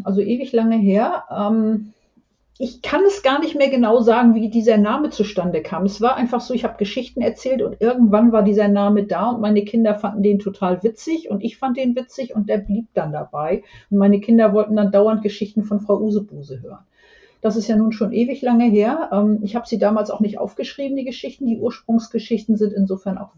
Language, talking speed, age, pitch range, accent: German, 210 wpm, 50-69, 200-245 Hz, German